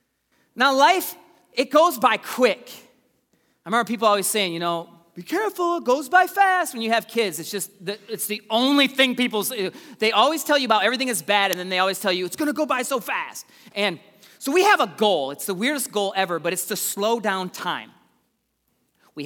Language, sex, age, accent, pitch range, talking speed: English, male, 30-49, American, 185-260 Hz, 220 wpm